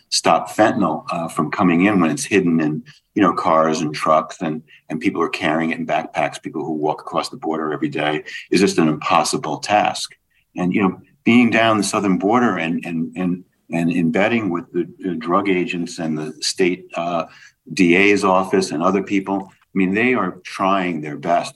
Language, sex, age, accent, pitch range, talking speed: English, male, 50-69, American, 80-95 Hz, 190 wpm